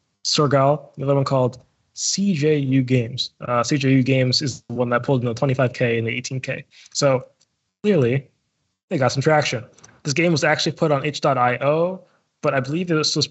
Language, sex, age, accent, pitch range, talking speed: English, male, 20-39, American, 120-140 Hz, 170 wpm